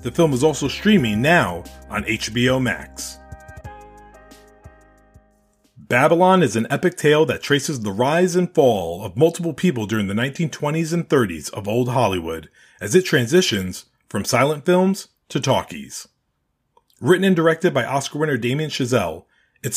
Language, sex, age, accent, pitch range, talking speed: English, male, 40-59, American, 115-165 Hz, 145 wpm